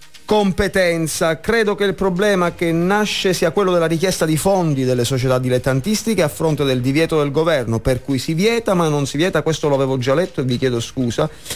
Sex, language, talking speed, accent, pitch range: male, Italian, 195 wpm, native, 130-170 Hz